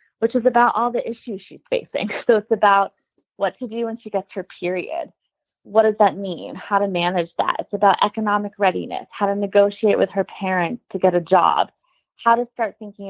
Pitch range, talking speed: 180-220 Hz, 205 wpm